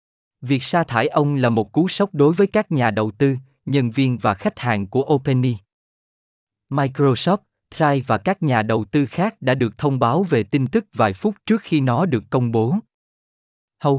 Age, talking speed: 20-39, 195 wpm